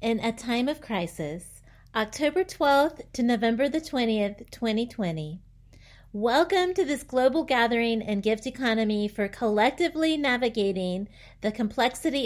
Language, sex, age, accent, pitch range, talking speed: English, female, 40-59, American, 205-275 Hz, 120 wpm